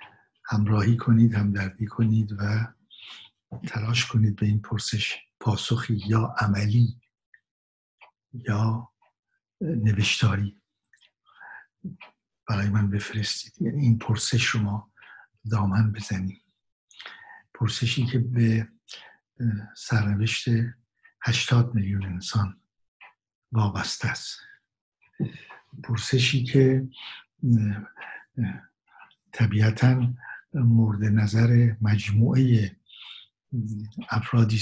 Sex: male